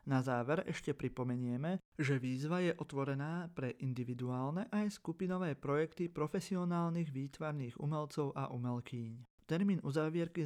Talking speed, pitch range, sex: 115 wpm, 135-175 Hz, male